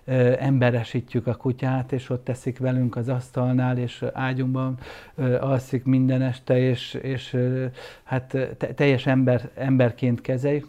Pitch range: 125-140 Hz